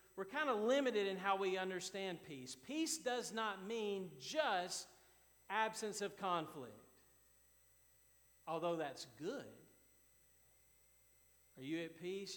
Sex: male